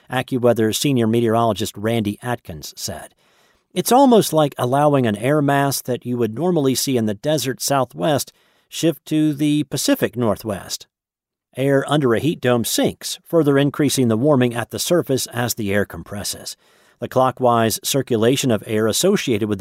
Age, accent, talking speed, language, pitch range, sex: 50-69, American, 155 wpm, English, 115-150 Hz, male